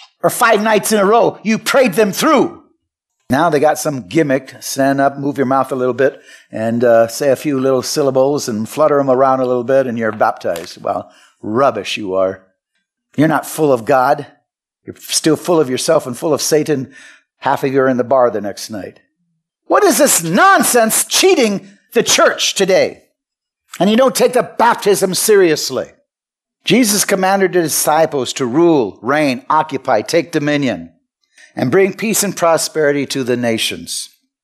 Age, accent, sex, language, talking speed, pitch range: 60-79, American, male, English, 175 wpm, 145-220 Hz